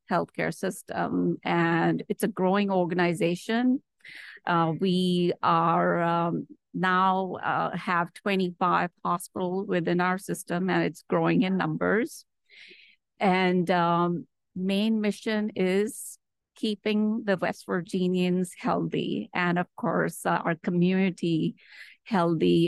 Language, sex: English, female